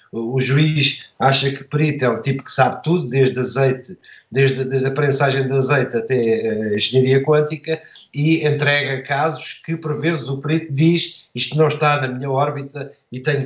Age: 50-69